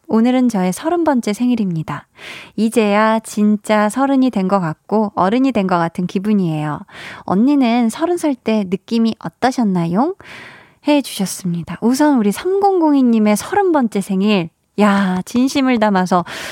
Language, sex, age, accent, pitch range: Korean, female, 20-39, native, 185-255 Hz